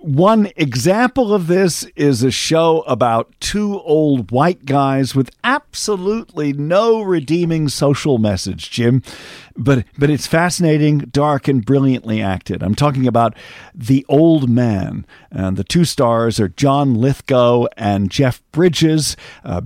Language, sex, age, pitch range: English, male, 50-69, 105-145 Hz